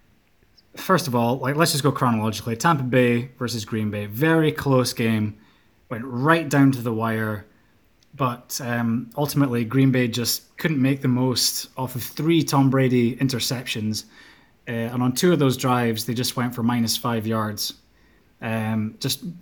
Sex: male